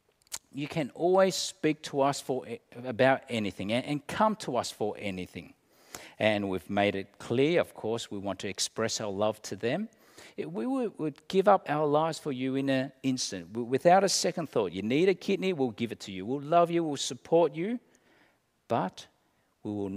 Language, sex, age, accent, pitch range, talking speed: English, male, 50-69, Australian, 105-160 Hz, 190 wpm